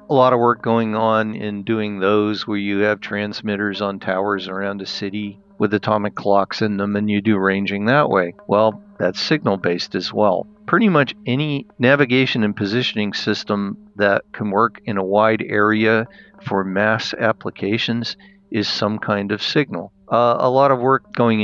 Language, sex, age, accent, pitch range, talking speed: Swedish, male, 50-69, American, 105-120 Hz, 175 wpm